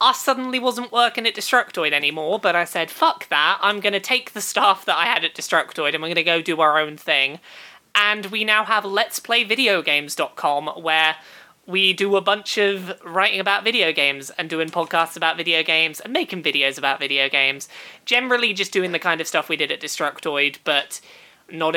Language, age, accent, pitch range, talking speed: English, 20-39, British, 160-210 Hz, 200 wpm